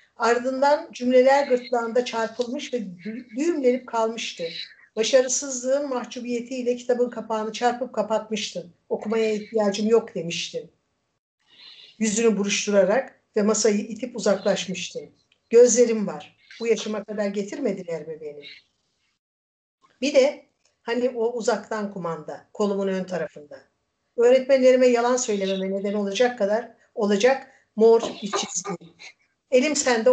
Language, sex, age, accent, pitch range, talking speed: Turkish, female, 60-79, native, 200-250 Hz, 105 wpm